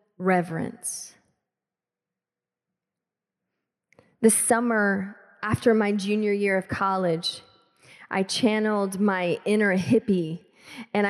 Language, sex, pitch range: English, female, 190-230 Hz